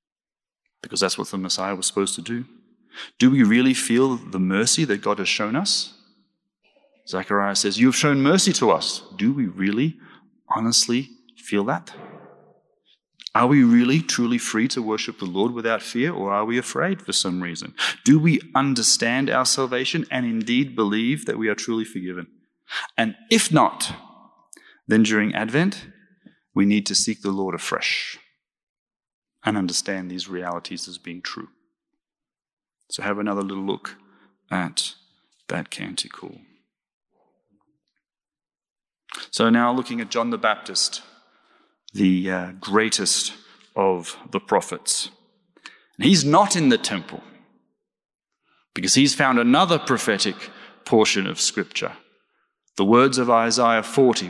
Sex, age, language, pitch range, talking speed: male, 30-49, English, 100-155 Hz, 135 wpm